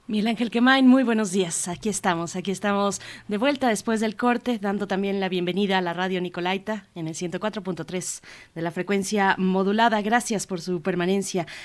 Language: Spanish